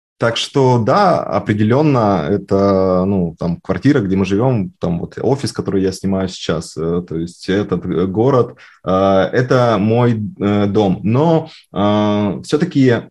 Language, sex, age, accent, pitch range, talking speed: Russian, male, 20-39, native, 100-125 Hz, 125 wpm